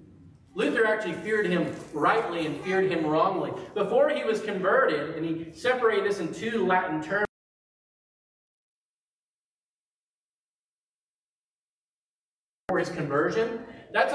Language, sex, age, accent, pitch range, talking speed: English, male, 40-59, American, 170-225 Hz, 105 wpm